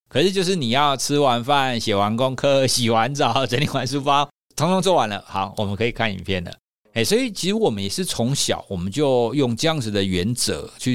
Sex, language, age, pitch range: male, Chinese, 50-69, 105-145 Hz